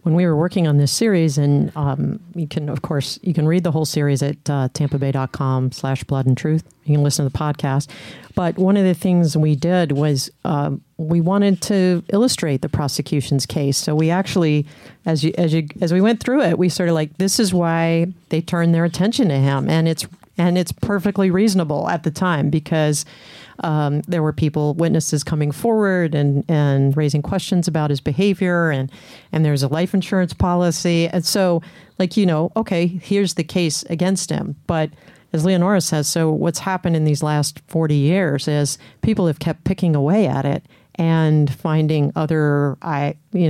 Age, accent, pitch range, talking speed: 40-59, American, 145-180 Hz, 195 wpm